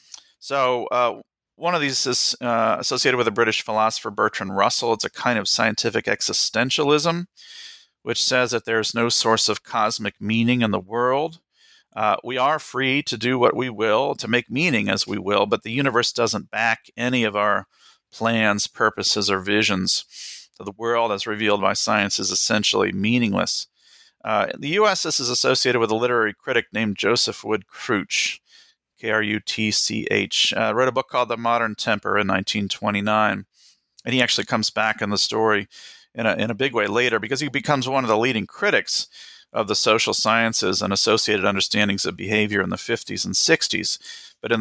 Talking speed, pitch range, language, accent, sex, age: 180 wpm, 105-125 Hz, English, American, male, 40-59